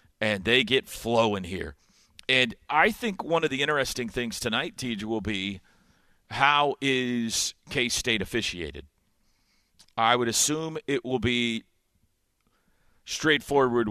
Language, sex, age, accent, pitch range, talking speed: English, male, 50-69, American, 95-130 Hz, 125 wpm